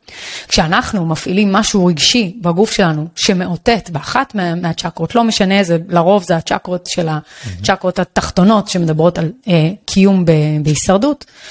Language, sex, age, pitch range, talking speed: Hebrew, female, 30-49, 180-235 Hz, 130 wpm